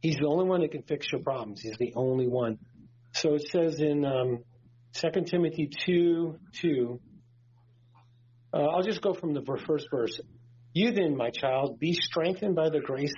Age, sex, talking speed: 40-59, male, 180 wpm